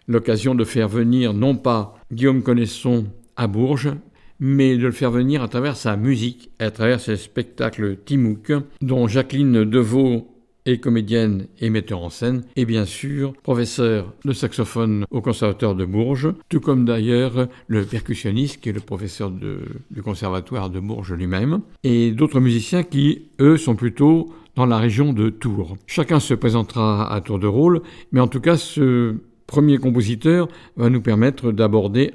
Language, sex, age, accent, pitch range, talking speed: French, male, 60-79, French, 110-140 Hz, 165 wpm